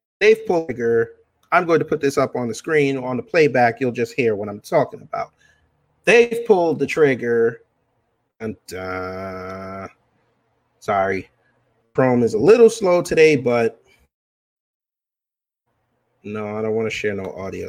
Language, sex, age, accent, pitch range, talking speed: English, male, 30-49, American, 120-180 Hz, 155 wpm